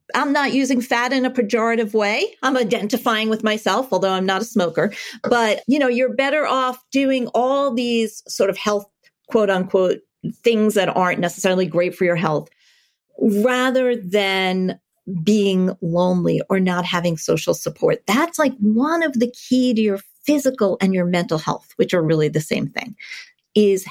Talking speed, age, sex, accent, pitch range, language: 175 wpm, 40-59, female, American, 185-250 Hz, English